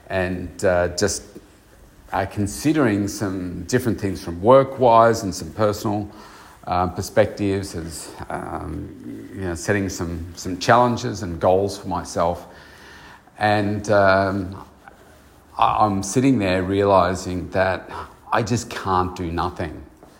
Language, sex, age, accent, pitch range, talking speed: English, male, 40-59, Australian, 90-105 Hz, 120 wpm